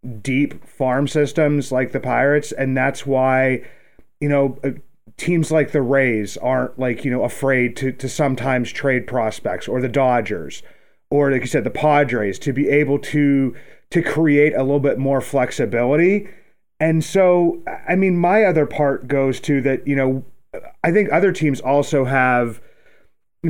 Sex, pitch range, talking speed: male, 125-145 Hz, 165 wpm